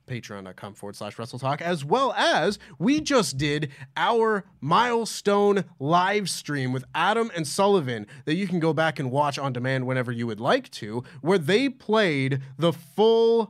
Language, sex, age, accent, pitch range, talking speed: English, male, 30-49, American, 125-175 Hz, 165 wpm